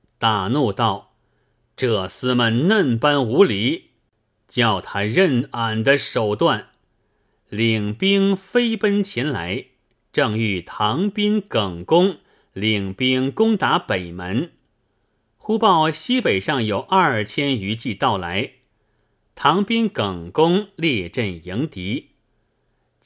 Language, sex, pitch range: Chinese, male, 110-155 Hz